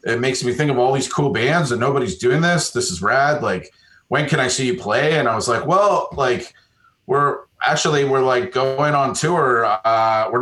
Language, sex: English, male